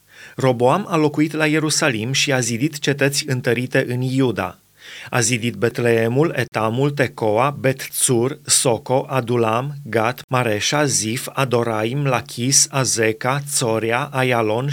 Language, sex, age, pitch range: Romanian, male, 30-49, 120-145 Hz